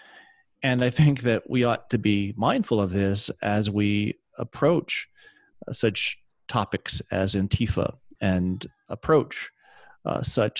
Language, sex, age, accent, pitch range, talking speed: English, male, 40-59, American, 100-130 Hz, 130 wpm